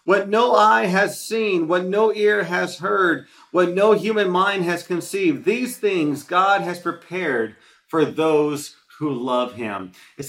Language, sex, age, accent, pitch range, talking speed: English, male, 40-59, American, 170-210 Hz, 160 wpm